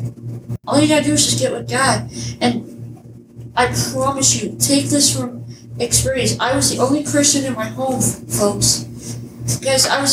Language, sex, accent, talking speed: English, female, American, 180 wpm